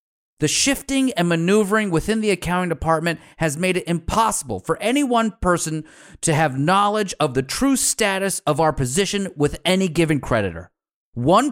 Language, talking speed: English, 160 wpm